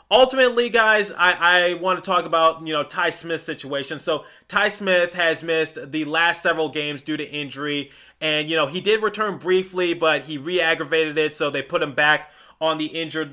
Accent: American